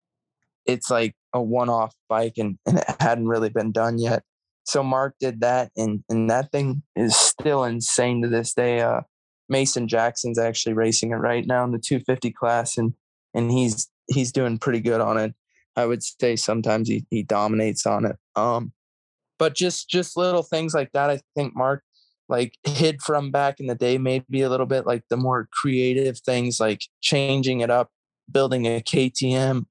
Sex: male